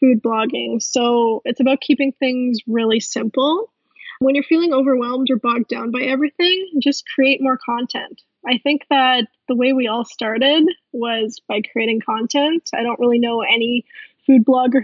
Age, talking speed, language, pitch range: 10-29, 165 wpm, English, 235-275 Hz